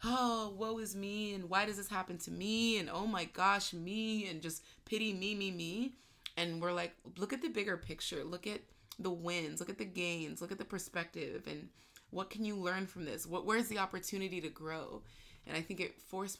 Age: 20-39